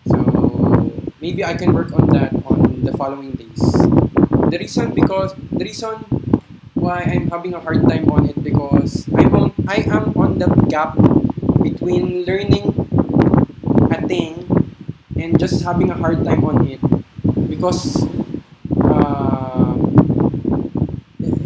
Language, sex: English, male